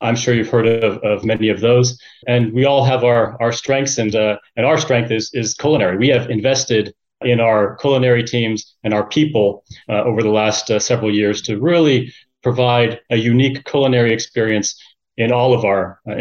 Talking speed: 195 wpm